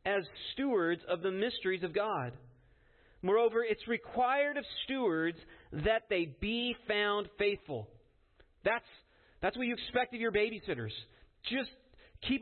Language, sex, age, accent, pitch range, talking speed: English, male, 40-59, American, 140-230 Hz, 130 wpm